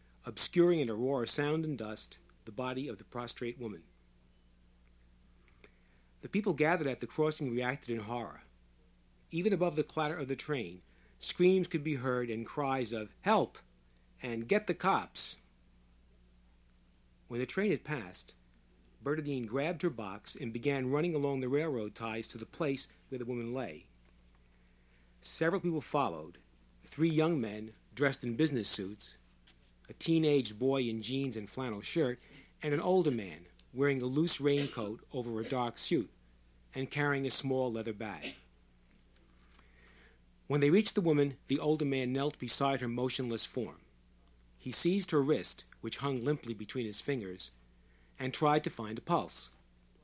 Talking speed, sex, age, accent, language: 155 wpm, male, 50-69, American, English